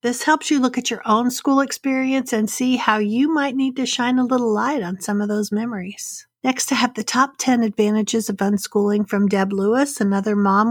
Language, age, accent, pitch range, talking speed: English, 50-69, American, 210-270 Hz, 220 wpm